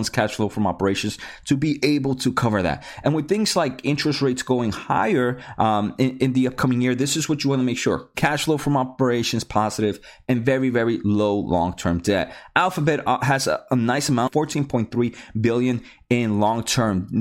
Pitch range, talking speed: 110-140 Hz, 185 wpm